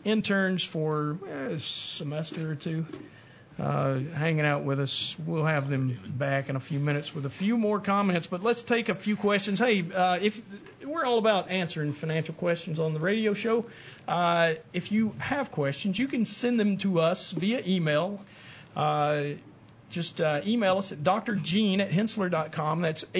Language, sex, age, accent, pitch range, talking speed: English, male, 50-69, American, 160-210 Hz, 170 wpm